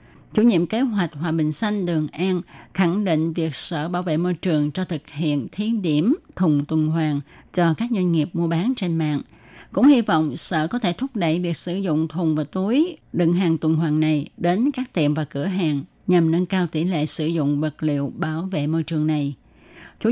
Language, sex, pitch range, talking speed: Vietnamese, female, 155-190 Hz, 220 wpm